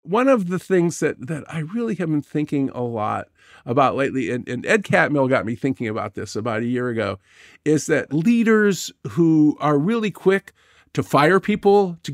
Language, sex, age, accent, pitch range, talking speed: English, male, 50-69, American, 135-190 Hz, 195 wpm